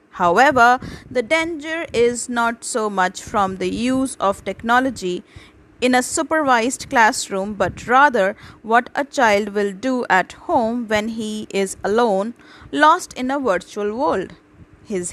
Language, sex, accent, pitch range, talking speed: Hindi, female, native, 205-265 Hz, 140 wpm